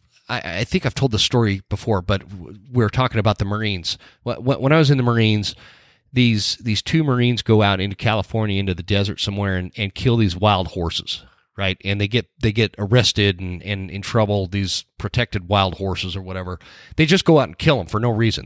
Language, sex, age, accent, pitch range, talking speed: English, male, 30-49, American, 100-125 Hz, 210 wpm